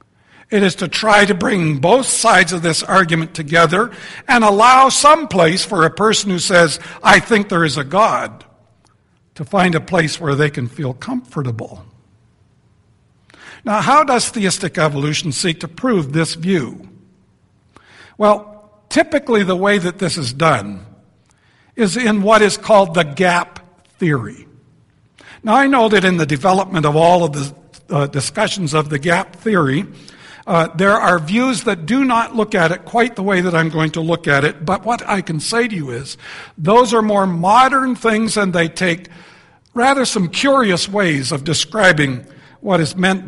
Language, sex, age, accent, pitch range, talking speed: English, male, 60-79, American, 160-215 Hz, 170 wpm